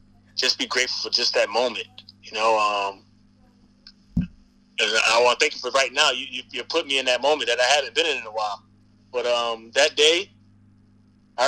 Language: English